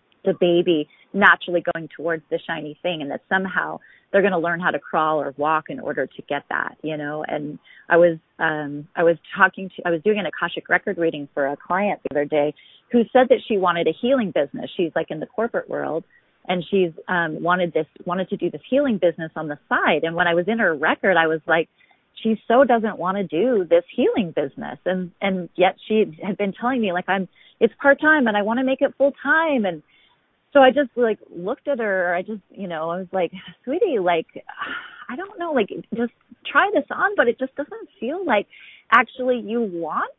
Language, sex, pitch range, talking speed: English, female, 170-235 Hz, 220 wpm